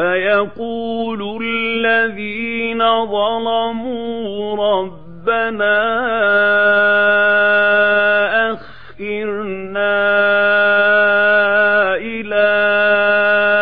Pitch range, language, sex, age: 175-210 Hz, Arabic, male, 50-69